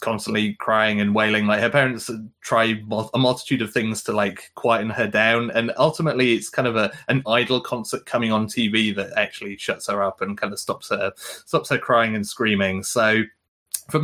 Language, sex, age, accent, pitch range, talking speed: English, male, 20-39, British, 110-140 Hz, 195 wpm